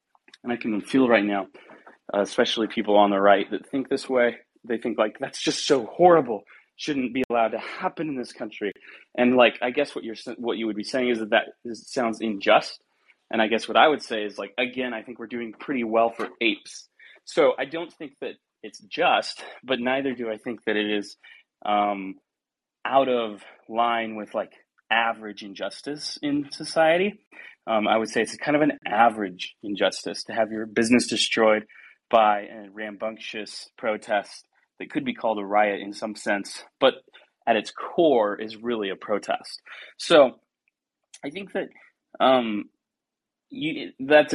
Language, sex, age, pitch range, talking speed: English, male, 30-49, 110-150 Hz, 180 wpm